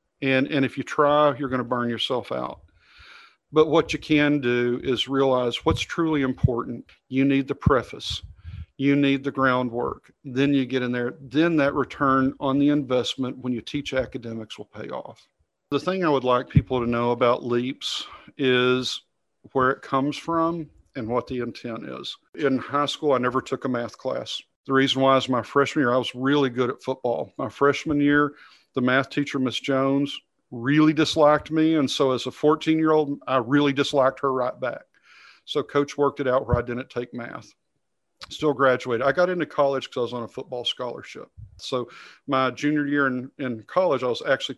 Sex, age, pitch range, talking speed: male, 50-69, 125-145 Hz, 195 wpm